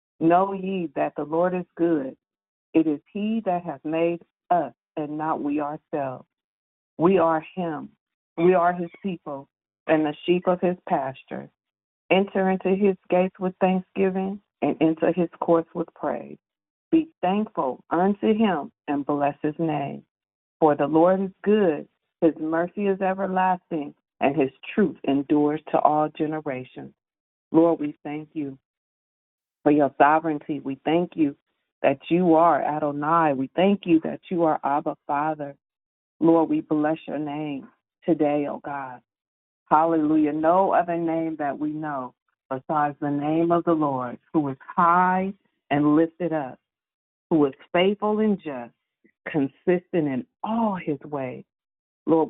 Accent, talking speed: American, 145 wpm